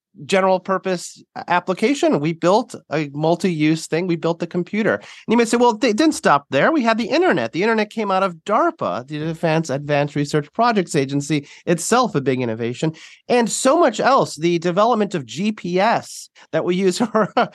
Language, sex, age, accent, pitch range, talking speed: English, male, 30-49, American, 145-210 Hz, 180 wpm